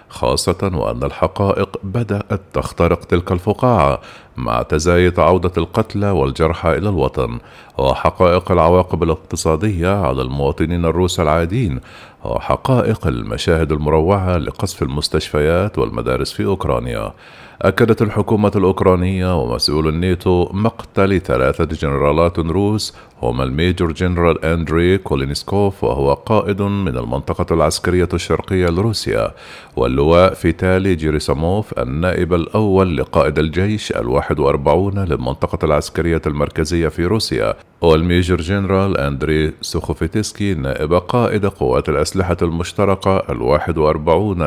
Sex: male